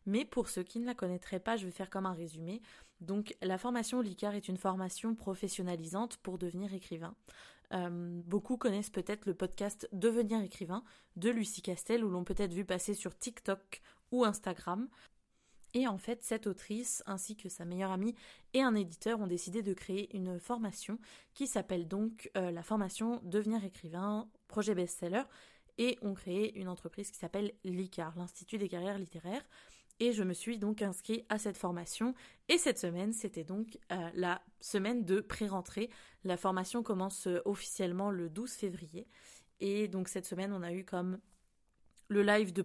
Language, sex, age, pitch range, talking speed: French, female, 20-39, 185-220 Hz, 175 wpm